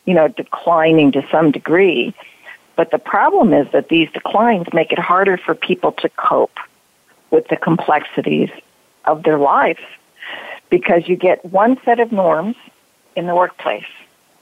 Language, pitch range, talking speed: English, 160-210 Hz, 150 wpm